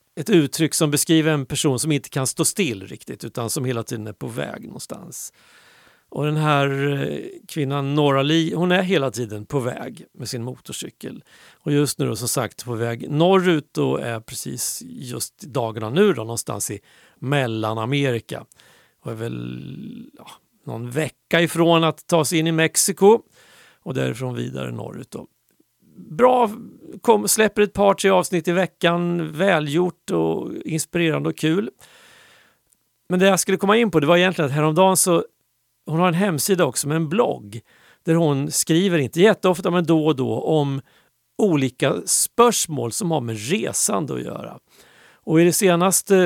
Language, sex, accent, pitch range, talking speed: Swedish, male, native, 125-175 Hz, 165 wpm